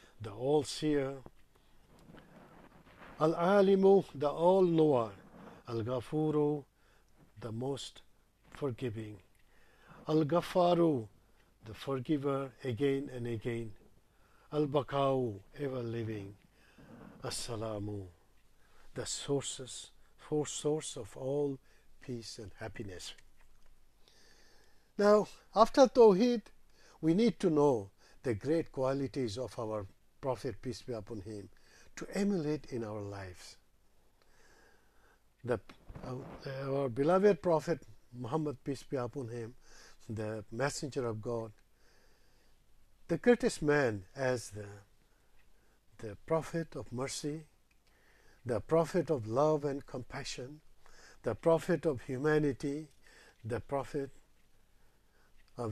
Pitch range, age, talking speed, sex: 110-150 Hz, 50-69, 95 wpm, male